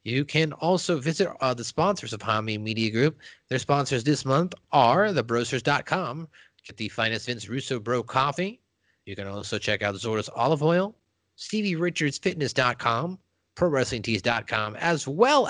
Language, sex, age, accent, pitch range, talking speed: English, male, 30-49, American, 110-150 Hz, 145 wpm